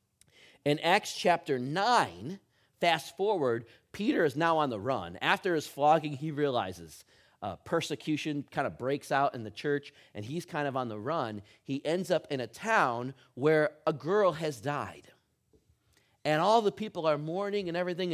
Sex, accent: male, American